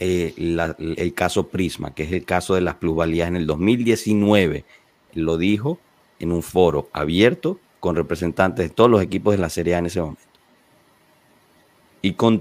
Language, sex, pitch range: Spanish, male, 85-105 Hz